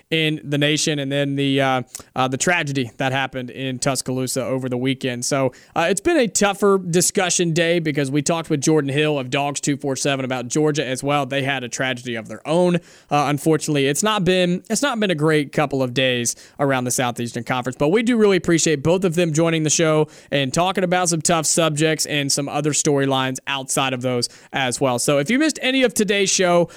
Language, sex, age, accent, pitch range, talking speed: English, male, 30-49, American, 140-180 Hz, 215 wpm